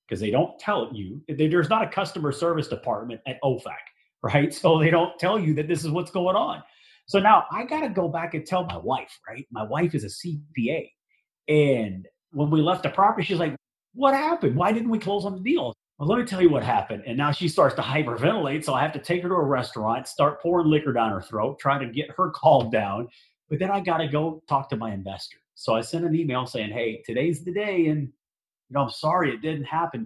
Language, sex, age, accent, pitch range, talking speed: English, male, 30-49, American, 125-170 Hz, 240 wpm